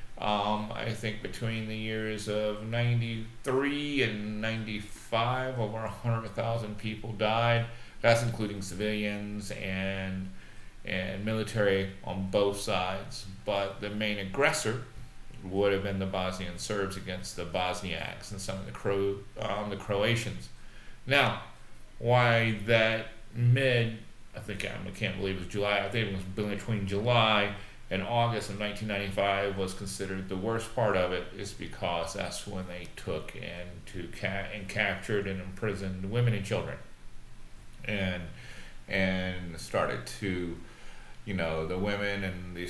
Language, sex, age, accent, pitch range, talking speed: English, male, 40-59, American, 95-110 Hz, 140 wpm